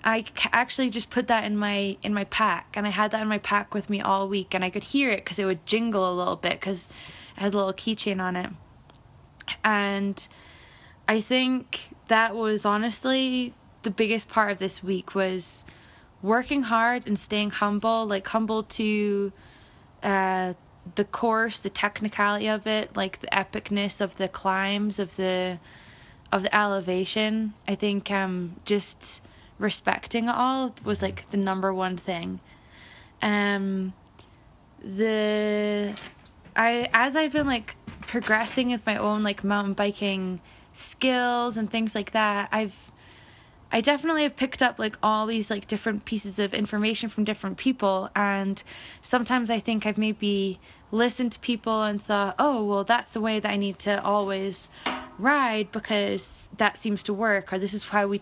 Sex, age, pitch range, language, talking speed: female, 10-29, 195-225 Hz, English, 165 wpm